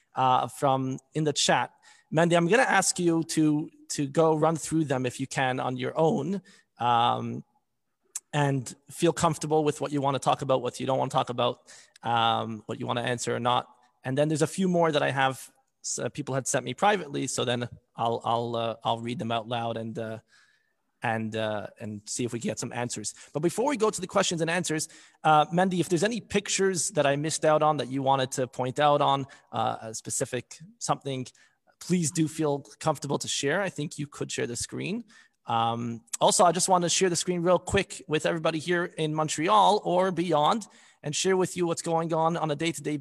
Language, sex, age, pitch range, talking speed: English, male, 30-49, 130-170 Hz, 220 wpm